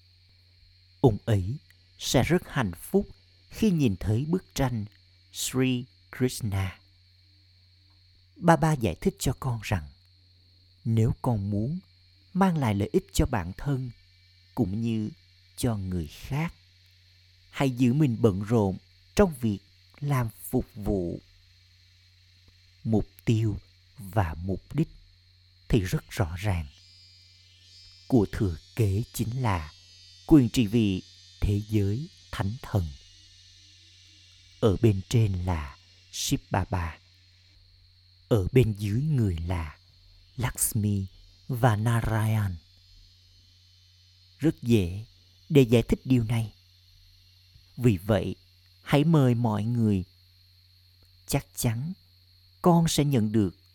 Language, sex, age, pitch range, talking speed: Vietnamese, male, 50-69, 90-115 Hz, 110 wpm